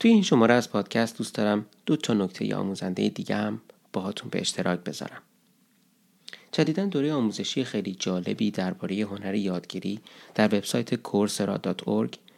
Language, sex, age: English, male, 30-49